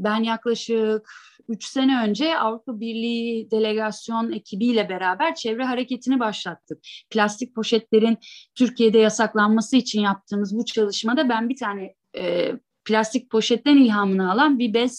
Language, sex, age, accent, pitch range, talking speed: Turkish, female, 30-49, native, 210-255 Hz, 125 wpm